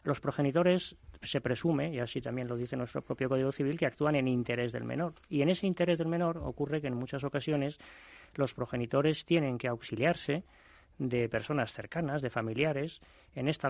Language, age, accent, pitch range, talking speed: Spanish, 20-39, Spanish, 120-145 Hz, 185 wpm